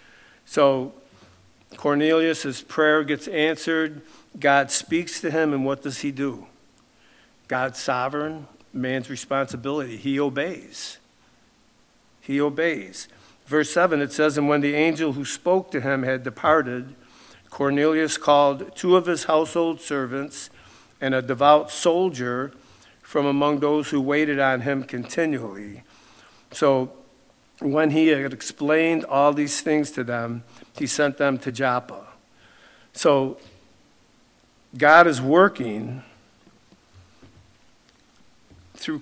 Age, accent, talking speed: 60-79, American, 115 wpm